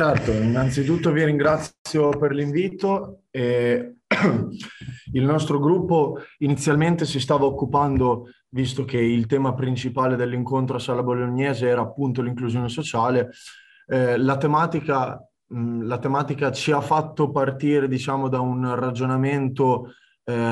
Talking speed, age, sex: 125 wpm, 20-39, male